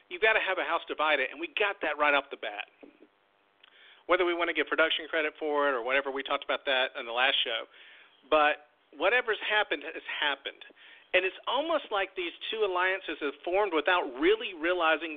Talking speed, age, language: 200 wpm, 40-59, English